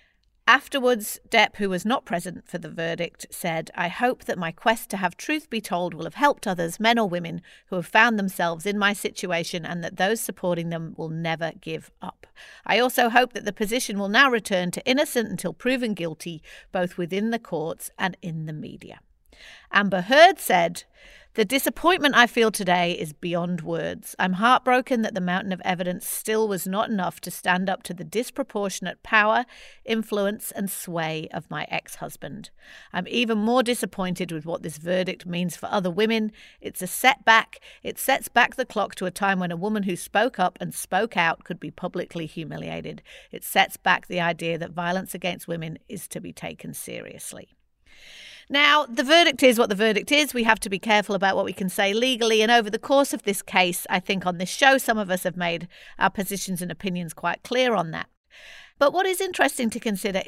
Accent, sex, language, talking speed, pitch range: British, female, English, 200 wpm, 180-230 Hz